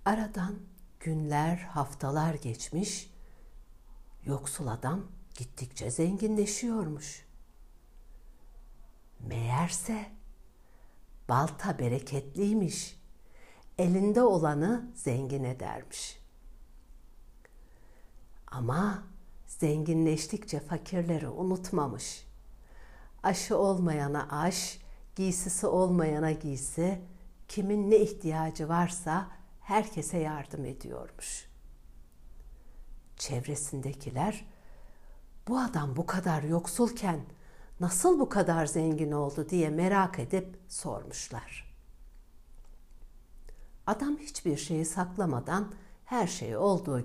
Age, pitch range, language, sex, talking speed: 60-79, 140-190 Hz, Turkish, female, 70 wpm